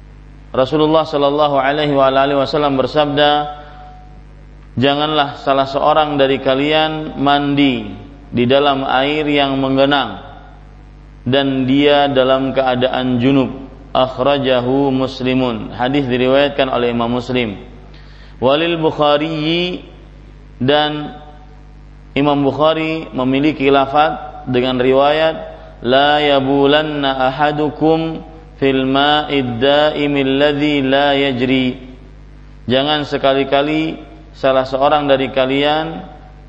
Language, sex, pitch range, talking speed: Malay, male, 135-150 Hz, 80 wpm